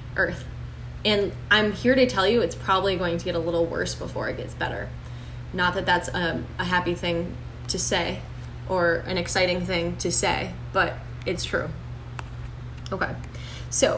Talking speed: 170 wpm